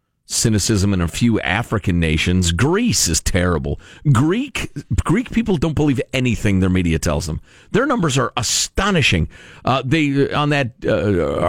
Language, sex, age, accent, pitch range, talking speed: English, male, 50-69, American, 105-155 Hz, 145 wpm